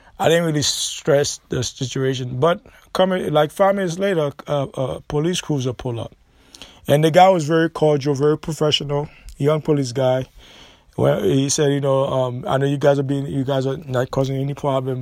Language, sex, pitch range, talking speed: English, male, 125-150 Hz, 195 wpm